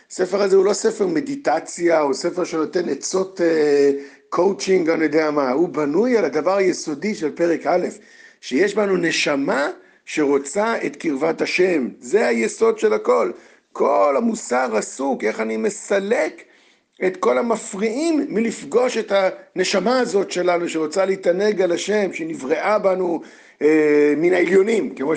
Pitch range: 165-225 Hz